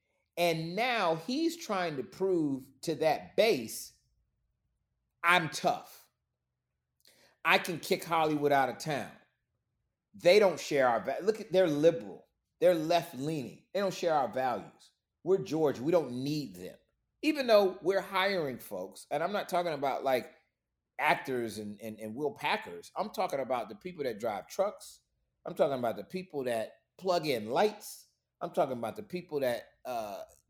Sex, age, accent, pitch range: male, 30-49, American, 125-195 Hz